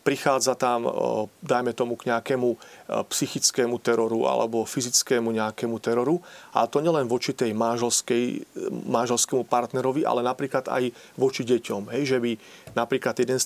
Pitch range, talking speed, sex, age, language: 115-130 Hz, 130 wpm, male, 40-59, Slovak